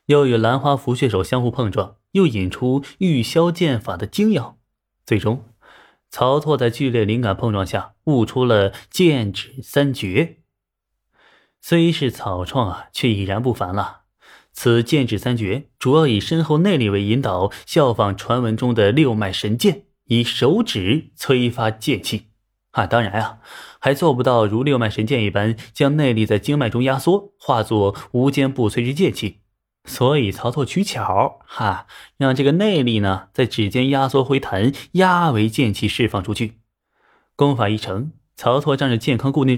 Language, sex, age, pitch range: Chinese, male, 20-39, 110-140 Hz